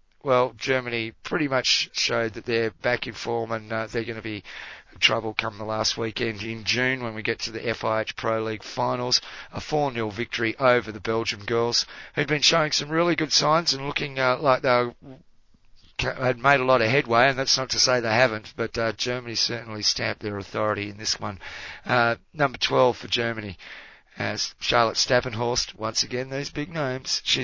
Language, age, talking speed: English, 30-49, 195 wpm